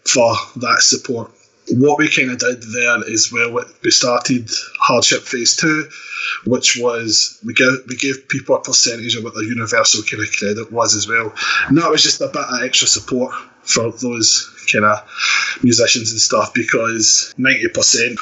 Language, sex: English, male